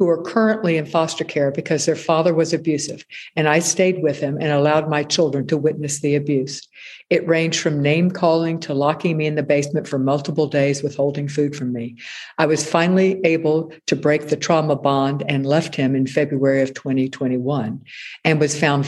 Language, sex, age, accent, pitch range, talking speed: English, female, 60-79, American, 145-170 Hz, 195 wpm